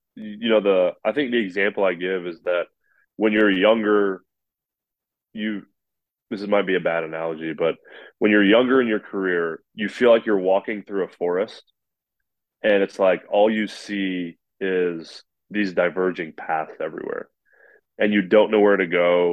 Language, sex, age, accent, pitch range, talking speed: English, male, 20-39, American, 90-105 Hz, 170 wpm